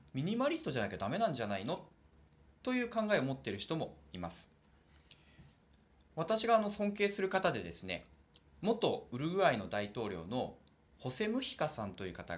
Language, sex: Japanese, male